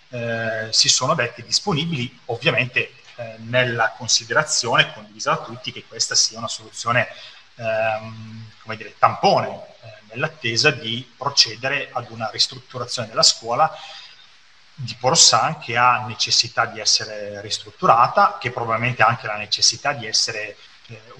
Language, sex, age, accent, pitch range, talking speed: Italian, male, 30-49, native, 110-125 Hz, 125 wpm